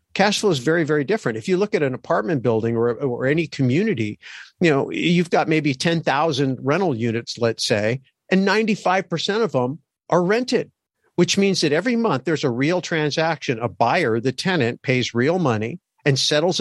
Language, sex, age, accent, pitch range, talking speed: English, male, 50-69, American, 130-165 Hz, 185 wpm